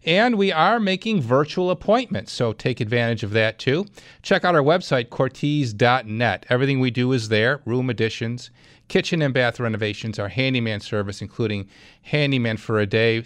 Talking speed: 165 wpm